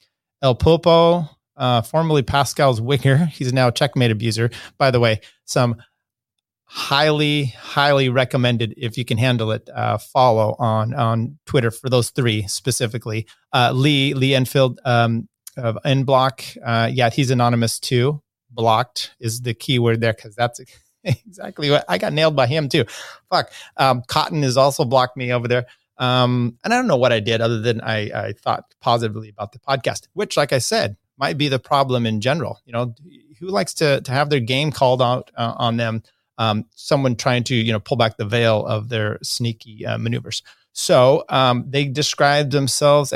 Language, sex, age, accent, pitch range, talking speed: English, male, 30-49, American, 115-145 Hz, 180 wpm